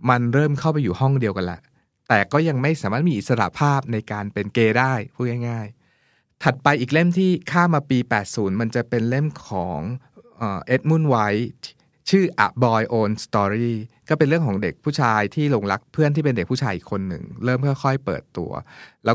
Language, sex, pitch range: Thai, male, 110-135 Hz